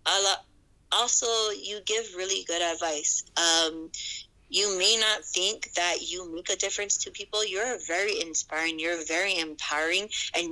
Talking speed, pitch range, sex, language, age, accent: 145 wpm, 170-255 Hz, female, English, 20-39, American